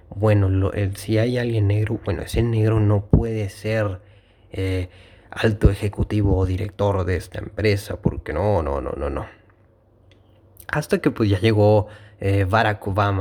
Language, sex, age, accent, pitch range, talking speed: Spanish, male, 30-49, Mexican, 100-115 Hz, 160 wpm